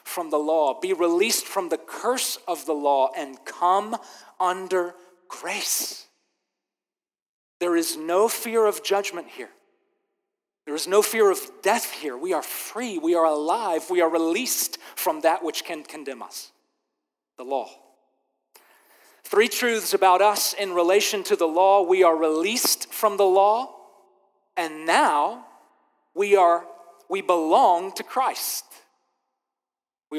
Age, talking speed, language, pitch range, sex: 40-59, 140 wpm, English, 160-240 Hz, male